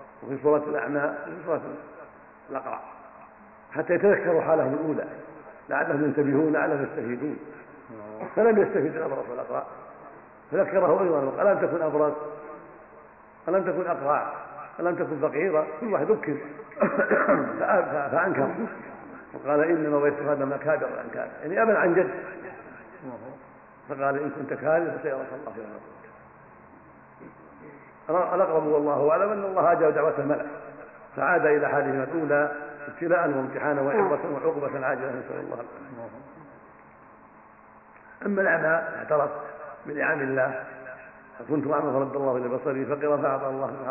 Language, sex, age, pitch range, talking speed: Arabic, male, 50-69, 140-170 Hz, 120 wpm